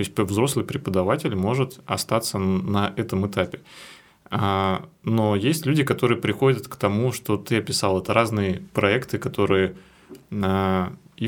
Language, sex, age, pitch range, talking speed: Russian, male, 20-39, 95-115 Hz, 130 wpm